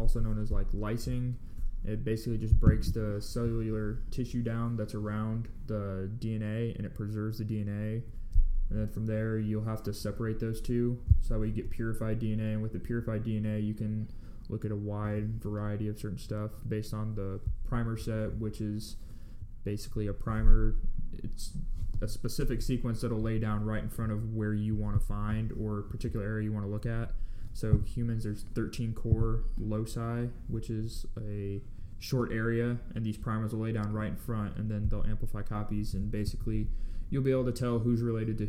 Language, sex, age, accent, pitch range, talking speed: English, male, 20-39, American, 105-115 Hz, 195 wpm